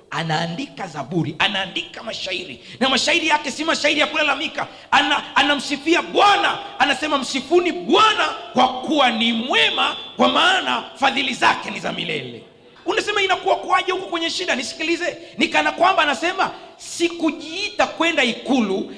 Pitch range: 215-315 Hz